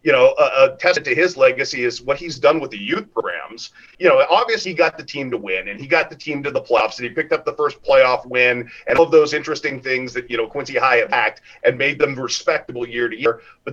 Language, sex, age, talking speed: English, male, 40-59, 270 wpm